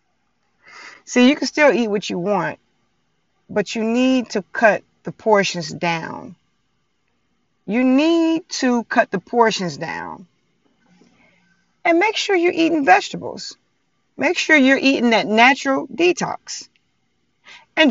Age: 30-49